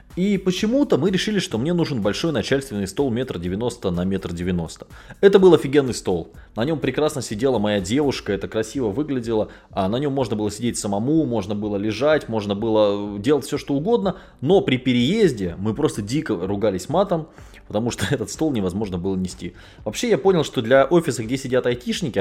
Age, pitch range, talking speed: 20-39, 100-155 Hz, 185 wpm